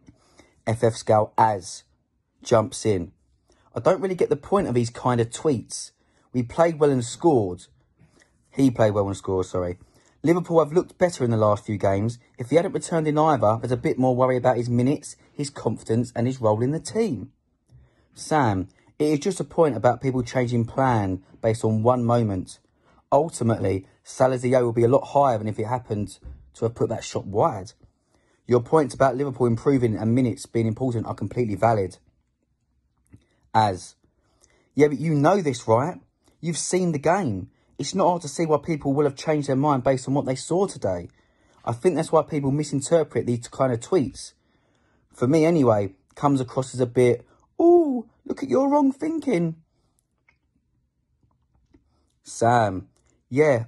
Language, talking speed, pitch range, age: English, 175 wpm, 110-150 Hz, 30-49